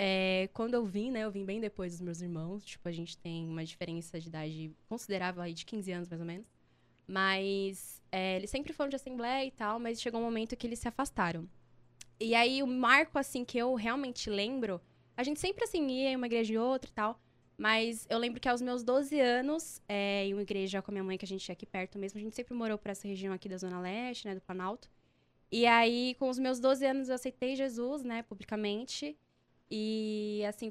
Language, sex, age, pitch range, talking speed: Portuguese, female, 10-29, 195-245 Hz, 230 wpm